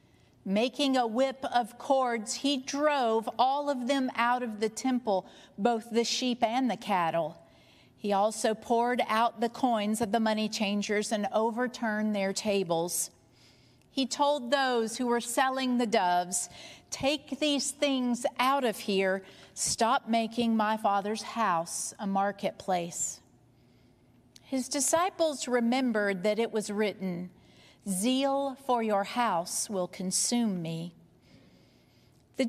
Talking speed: 130 wpm